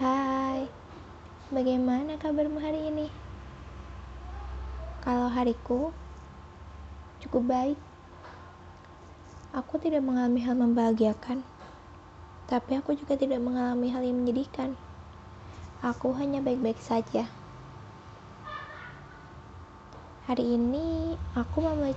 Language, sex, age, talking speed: Indonesian, female, 20-39, 80 wpm